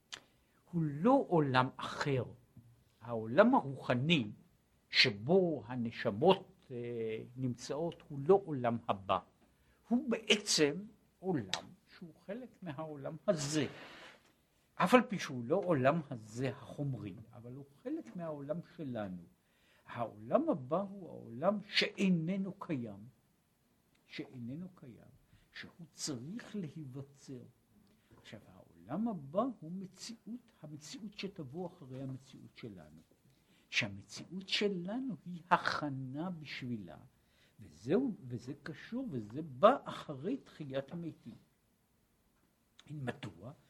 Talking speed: 90 wpm